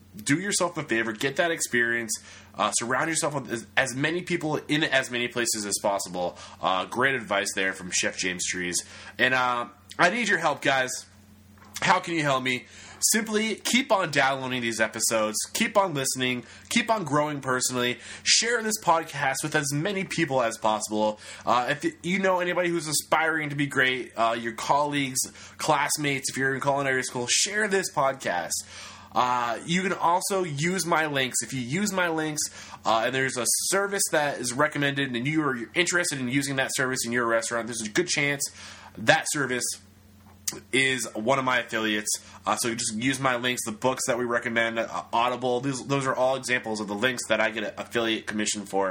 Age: 20-39